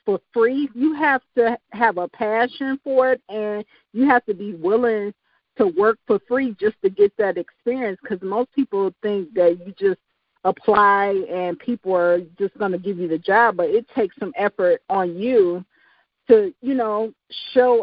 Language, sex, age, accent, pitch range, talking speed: English, female, 50-69, American, 190-240 Hz, 180 wpm